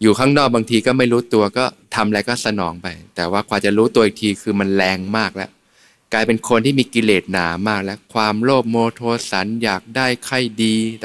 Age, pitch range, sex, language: 20-39, 100-120 Hz, male, Thai